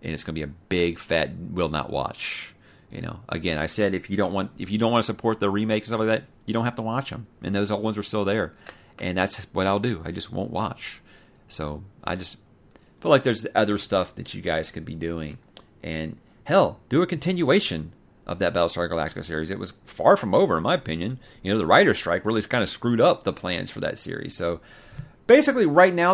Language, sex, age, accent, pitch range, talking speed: English, male, 40-59, American, 85-120 Hz, 240 wpm